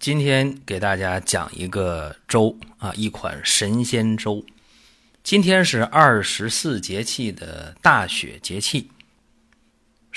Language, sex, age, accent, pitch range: Chinese, male, 30-49, native, 95-125 Hz